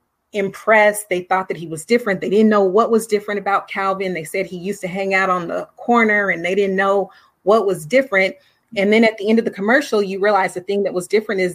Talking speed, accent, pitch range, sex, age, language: 250 wpm, American, 185-225 Hz, female, 30-49, English